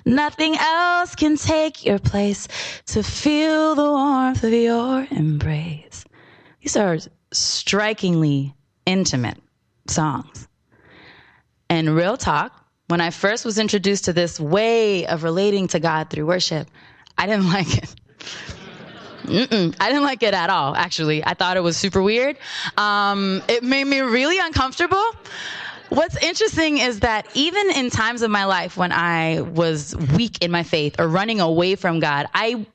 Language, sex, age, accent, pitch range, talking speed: English, female, 20-39, American, 170-260 Hz, 150 wpm